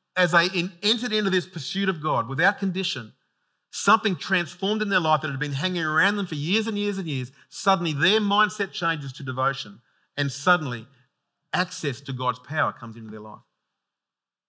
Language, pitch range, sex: English, 130-180 Hz, male